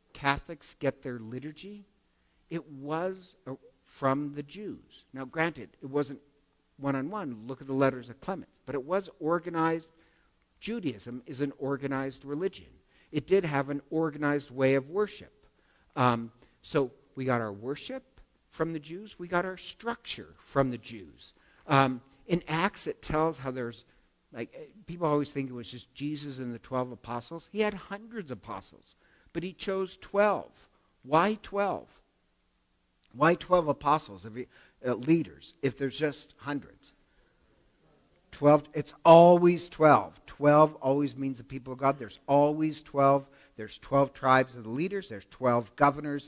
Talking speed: 150 wpm